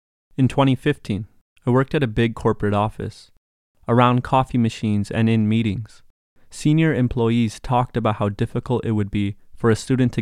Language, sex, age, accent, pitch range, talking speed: English, male, 20-39, American, 100-125 Hz, 165 wpm